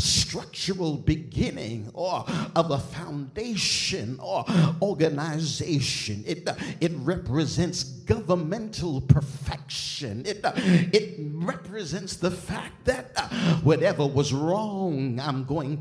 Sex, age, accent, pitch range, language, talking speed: male, 50-69, American, 140-175 Hz, English, 105 wpm